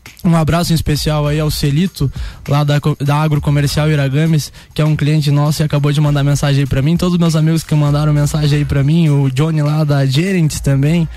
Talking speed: 215 wpm